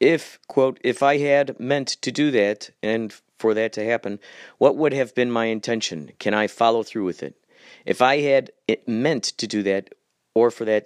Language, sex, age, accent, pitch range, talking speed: English, male, 40-59, American, 100-130 Hz, 200 wpm